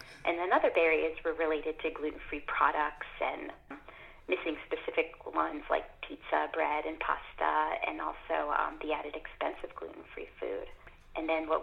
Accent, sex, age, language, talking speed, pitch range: American, female, 30-49, English, 155 wpm, 160-215 Hz